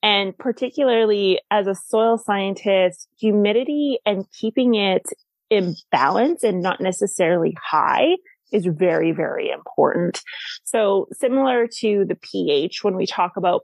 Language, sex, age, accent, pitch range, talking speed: English, female, 30-49, American, 180-255 Hz, 130 wpm